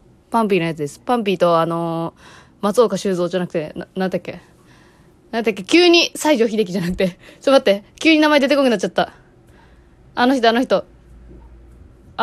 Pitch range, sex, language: 230-350 Hz, female, Japanese